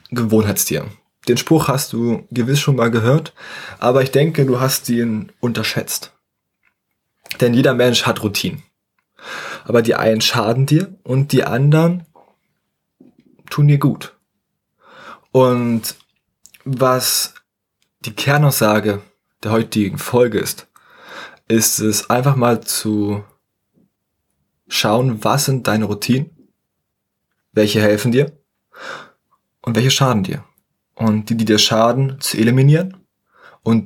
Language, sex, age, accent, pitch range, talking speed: German, male, 20-39, German, 110-135 Hz, 115 wpm